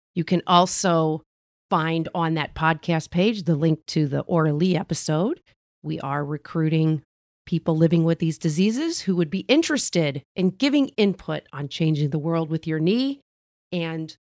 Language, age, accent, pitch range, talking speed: English, 40-59, American, 155-200 Hz, 155 wpm